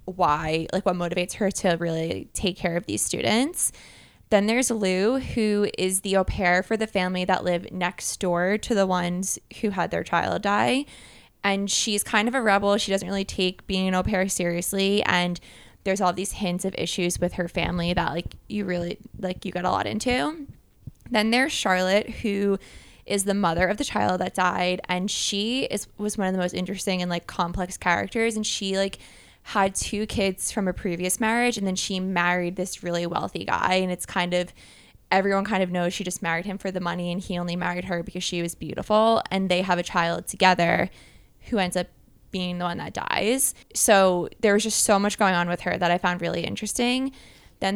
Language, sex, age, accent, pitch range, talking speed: English, female, 20-39, American, 180-205 Hz, 210 wpm